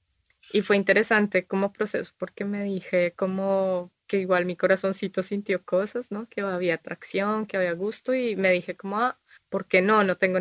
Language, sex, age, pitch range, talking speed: Spanish, female, 20-39, 180-205 Hz, 185 wpm